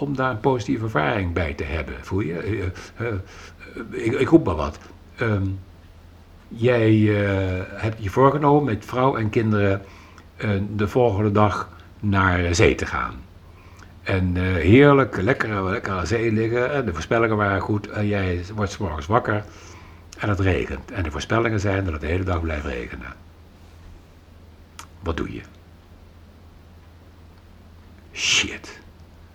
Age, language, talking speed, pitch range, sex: 60-79, Dutch, 140 wpm, 85-105 Hz, male